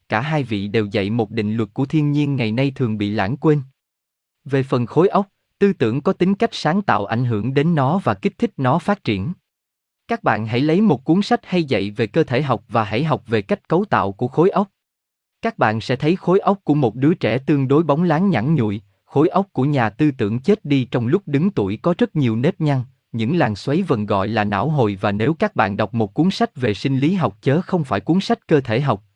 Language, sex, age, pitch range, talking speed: Vietnamese, male, 20-39, 110-170 Hz, 250 wpm